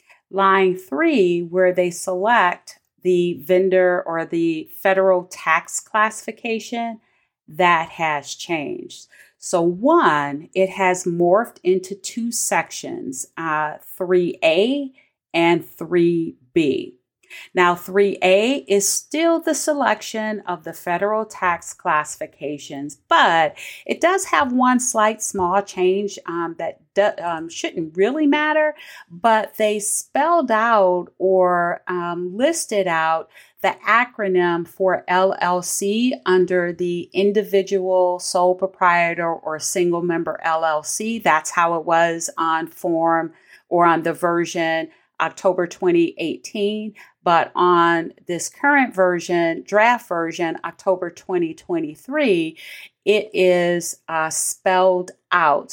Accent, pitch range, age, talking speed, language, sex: American, 165-215 Hz, 40-59, 105 wpm, English, female